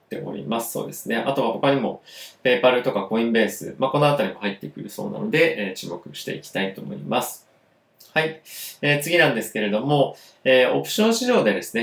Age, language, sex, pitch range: 20-39, Japanese, male, 110-175 Hz